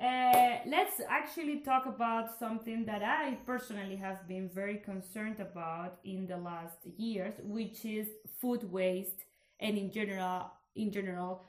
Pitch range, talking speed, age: 195-240 Hz, 140 wpm, 20-39